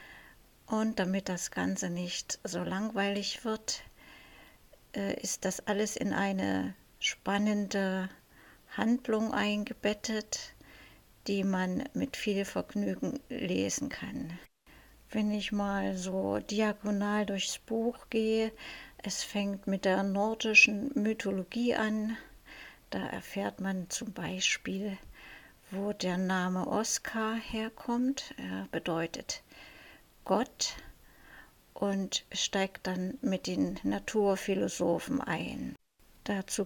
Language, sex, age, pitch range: German, female, 60-79, 190-220 Hz